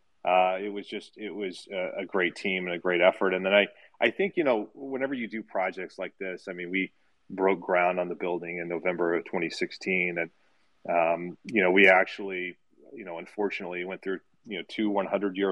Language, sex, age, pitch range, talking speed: English, male, 30-49, 85-95 Hz, 215 wpm